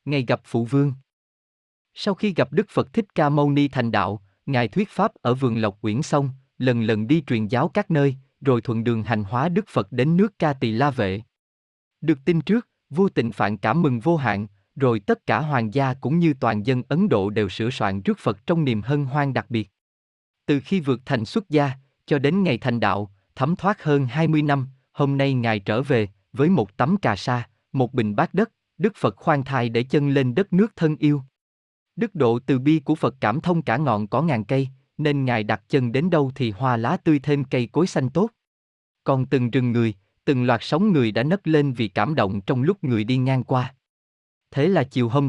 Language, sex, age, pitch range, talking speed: Vietnamese, male, 20-39, 115-155 Hz, 225 wpm